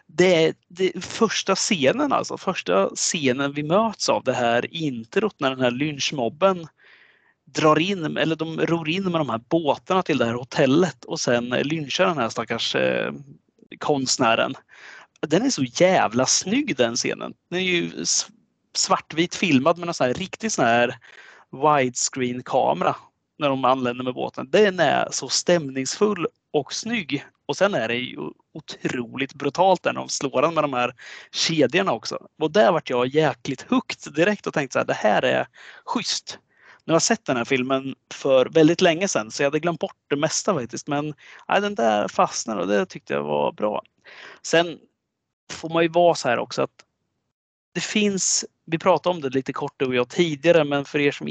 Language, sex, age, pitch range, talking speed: Swedish, male, 30-49, 130-175 Hz, 175 wpm